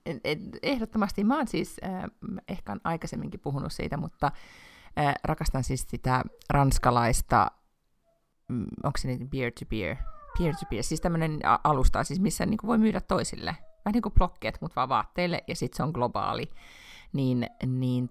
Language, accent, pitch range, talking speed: Finnish, native, 120-175 Hz, 150 wpm